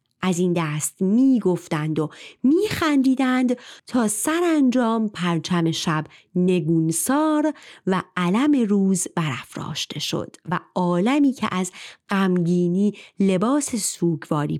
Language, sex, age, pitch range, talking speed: Persian, female, 30-49, 165-230 Hz, 95 wpm